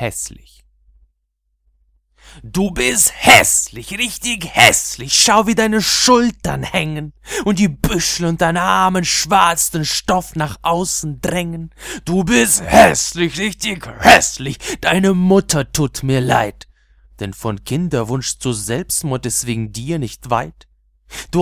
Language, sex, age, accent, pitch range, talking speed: German, male, 30-49, German, 120-195 Hz, 120 wpm